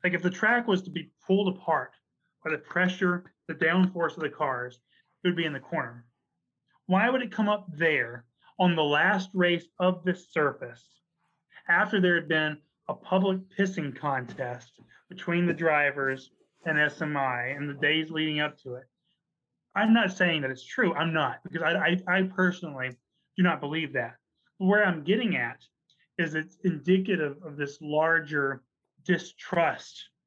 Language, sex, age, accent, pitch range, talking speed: English, male, 30-49, American, 140-180 Hz, 170 wpm